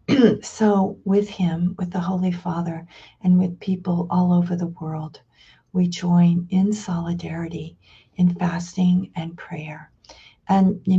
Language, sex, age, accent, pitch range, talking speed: English, female, 50-69, American, 170-200 Hz, 130 wpm